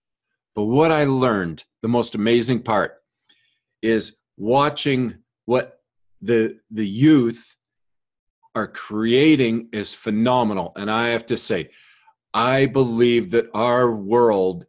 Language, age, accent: English, 40-59, American